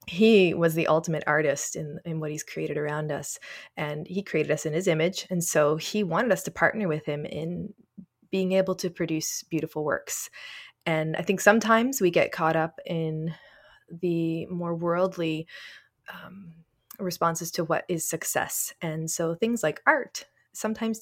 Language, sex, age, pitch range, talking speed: English, female, 20-39, 160-205 Hz, 170 wpm